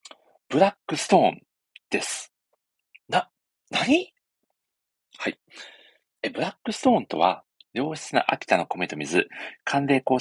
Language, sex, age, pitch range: Japanese, male, 40-59, 125-185 Hz